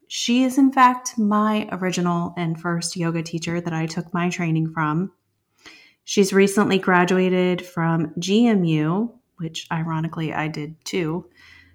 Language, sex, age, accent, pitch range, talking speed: English, female, 30-49, American, 160-195 Hz, 135 wpm